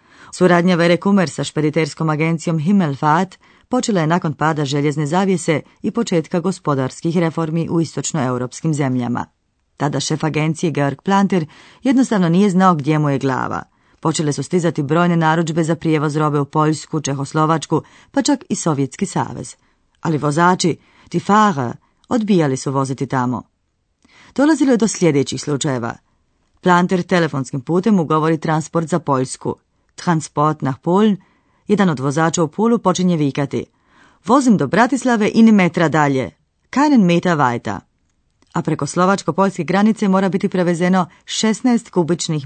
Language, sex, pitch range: Croatian, female, 150-195 Hz